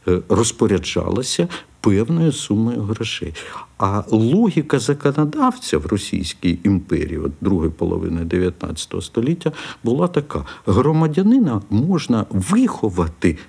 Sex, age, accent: male, 50-69, native